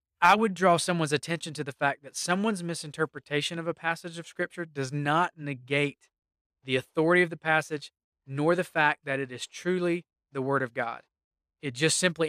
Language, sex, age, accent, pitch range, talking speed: English, male, 20-39, American, 135-165 Hz, 185 wpm